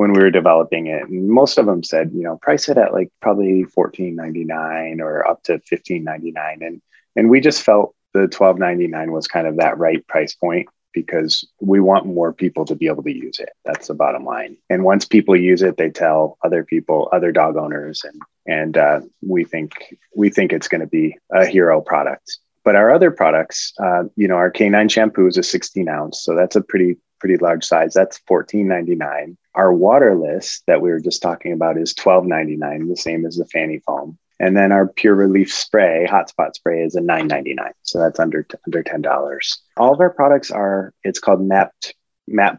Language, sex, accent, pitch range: English, male, American, 85-100 Hz